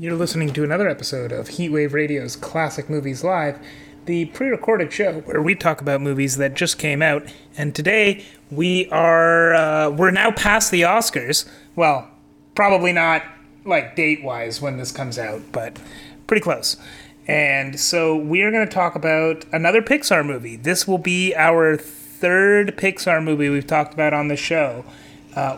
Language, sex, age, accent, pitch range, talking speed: English, male, 30-49, American, 145-180 Hz, 160 wpm